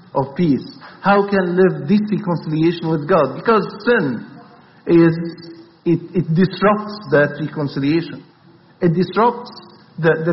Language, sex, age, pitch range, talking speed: English, male, 50-69, 150-195 Hz, 130 wpm